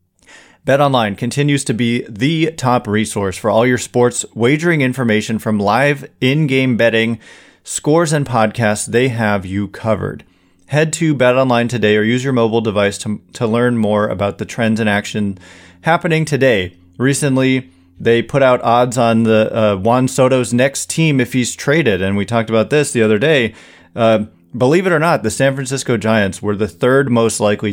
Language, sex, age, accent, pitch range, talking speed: English, male, 30-49, American, 105-130 Hz, 175 wpm